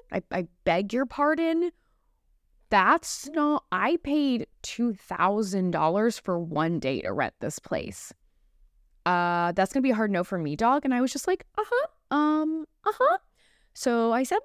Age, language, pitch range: 20-39, English, 175-235 Hz